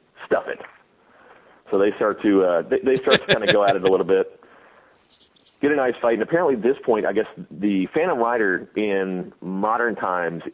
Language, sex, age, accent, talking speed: English, male, 40-59, American, 205 wpm